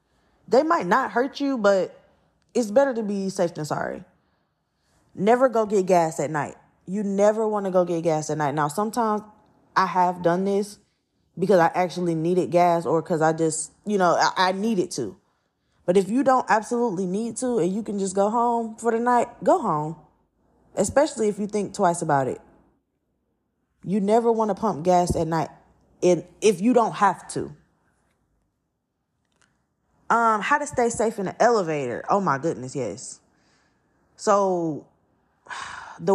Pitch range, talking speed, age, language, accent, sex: 170-220 Hz, 165 wpm, 20-39, English, American, female